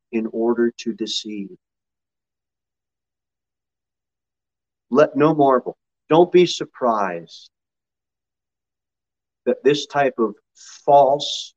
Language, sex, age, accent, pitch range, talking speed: English, male, 40-59, American, 105-140 Hz, 80 wpm